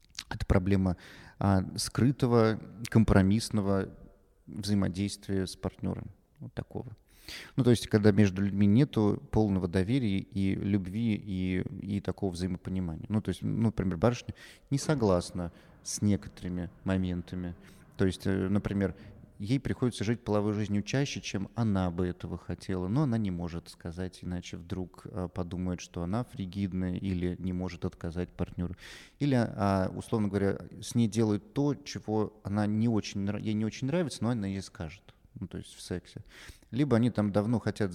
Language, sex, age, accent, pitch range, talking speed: Russian, male, 30-49, native, 95-115 Hz, 140 wpm